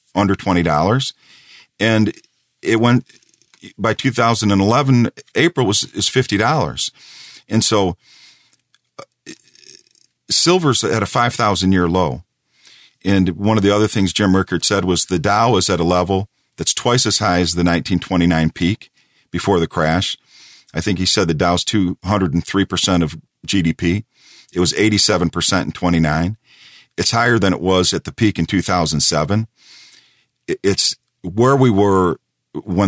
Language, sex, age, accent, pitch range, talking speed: English, male, 50-69, American, 90-115 Hz, 170 wpm